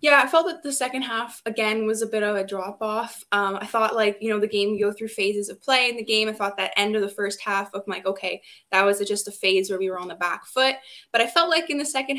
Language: English